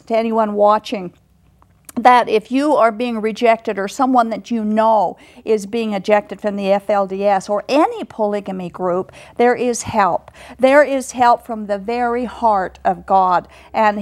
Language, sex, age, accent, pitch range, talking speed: English, female, 50-69, American, 215-280 Hz, 160 wpm